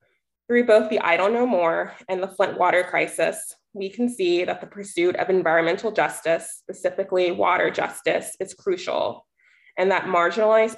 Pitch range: 180-215 Hz